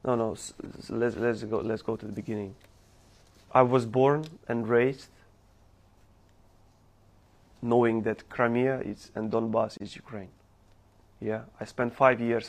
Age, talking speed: 30-49, 140 wpm